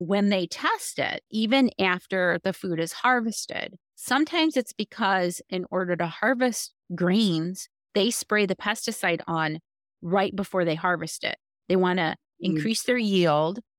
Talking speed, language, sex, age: 145 wpm, English, female, 30-49